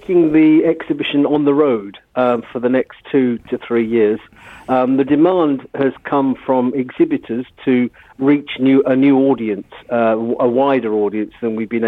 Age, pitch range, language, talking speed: 50-69, 120-145 Hz, English, 165 wpm